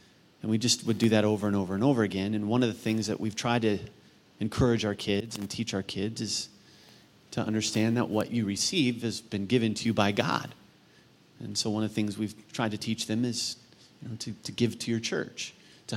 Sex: male